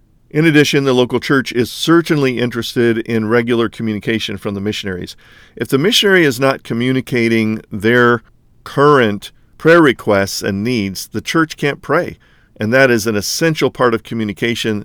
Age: 50-69